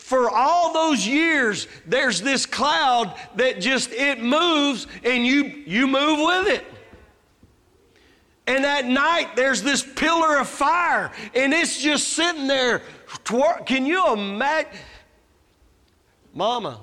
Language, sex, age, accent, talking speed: English, male, 40-59, American, 120 wpm